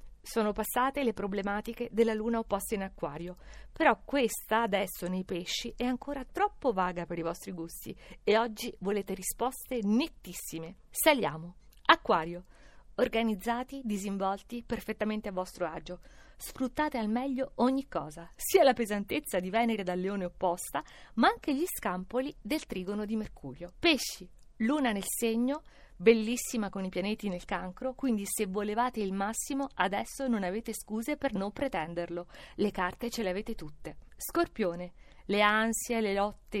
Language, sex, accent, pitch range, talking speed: Italian, female, native, 185-245 Hz, 145 wpm